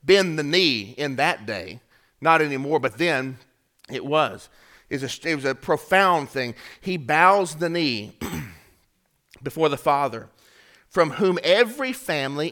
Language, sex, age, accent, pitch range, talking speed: English, male, 40-59, American, 130-180 Hz, 140 wpm